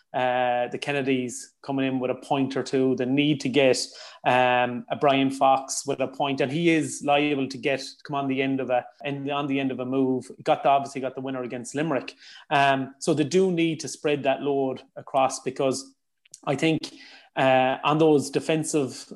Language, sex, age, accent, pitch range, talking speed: English, male, 30-49, Irish, 130-150 Hz, 205 wpm